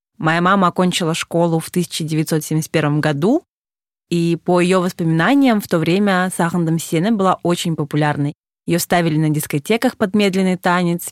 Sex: female